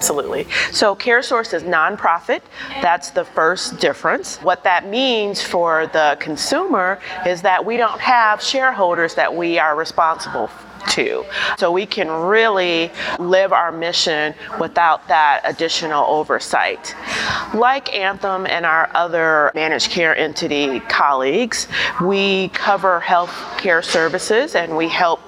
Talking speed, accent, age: 130 wpm, American, 40-59